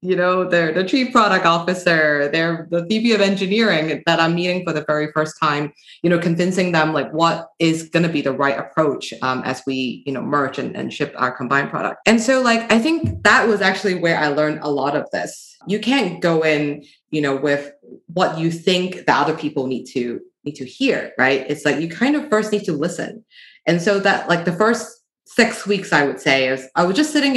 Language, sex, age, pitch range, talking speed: English, female, 20-39, 145-195 Hz, 230 wpm